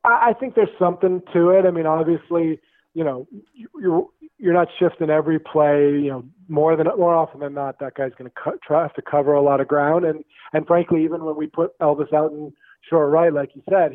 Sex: male